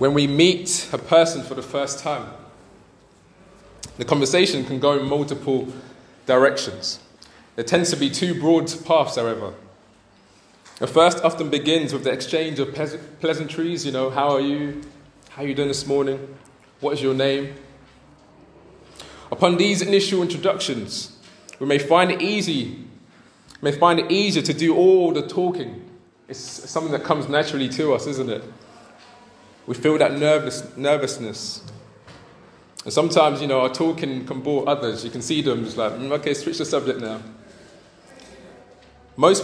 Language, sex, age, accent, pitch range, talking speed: English, male, 20-39, British, 135-165 Hz, 155 wpm